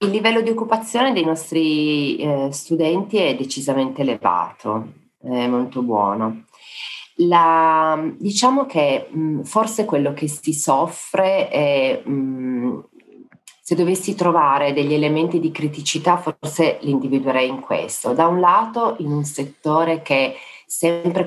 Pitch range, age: 130-160 Hz, 40-59